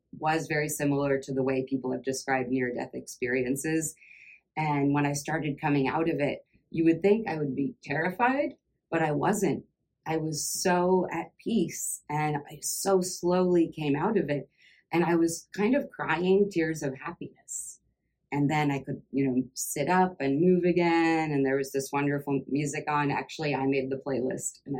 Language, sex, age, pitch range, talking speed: English, female, 30-49, 135-165 Hz, 185 wpm